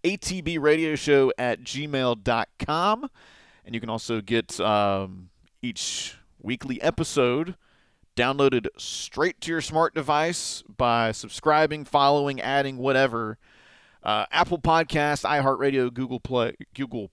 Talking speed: 100 wpm